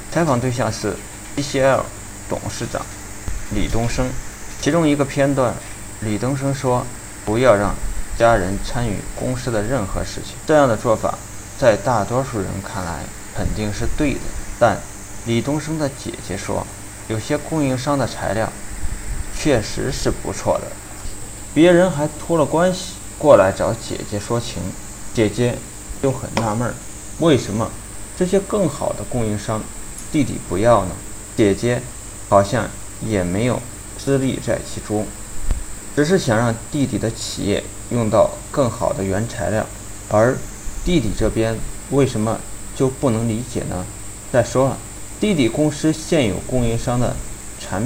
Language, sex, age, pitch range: Chinese, male, 20-39, 100-130 Hz